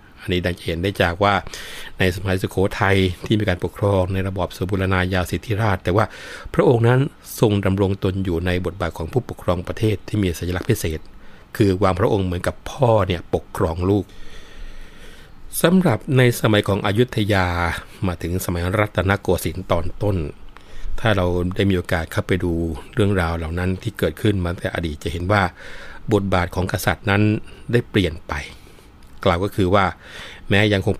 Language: Thai